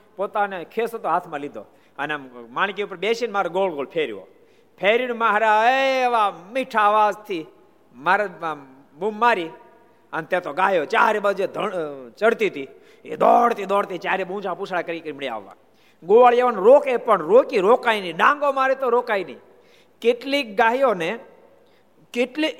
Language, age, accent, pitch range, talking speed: Gujarati, 50-69, native, 205-260 Hz, 130 wpm